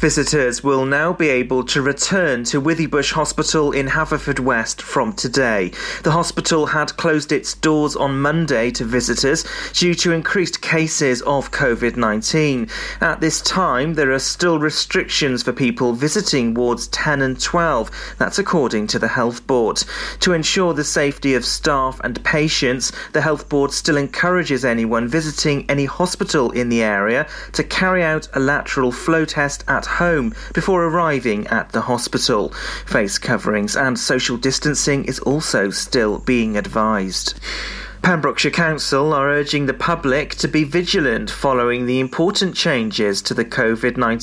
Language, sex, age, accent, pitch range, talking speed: English, male, 30-49, British, 125-160 Hz, 150 wpm